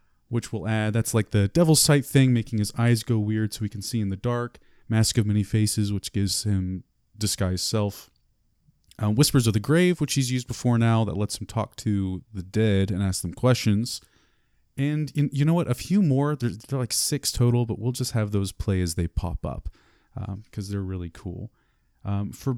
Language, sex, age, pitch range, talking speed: English, male, 30-49, 100-125 Hz, 210 wpm